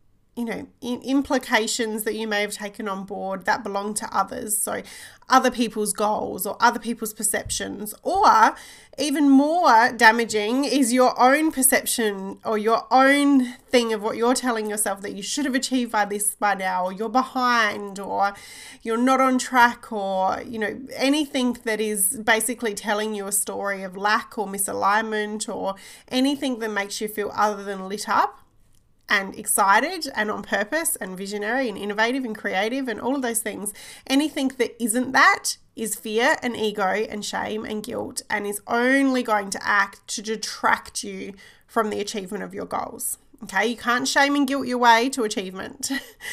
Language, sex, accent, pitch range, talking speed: English, female, Australian, 210-250 Hz, 175 wpm